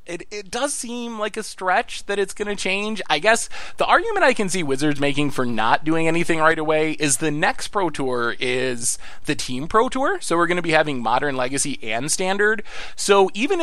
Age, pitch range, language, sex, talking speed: 20-39, 130-175 Hz, English, male, 215 wpm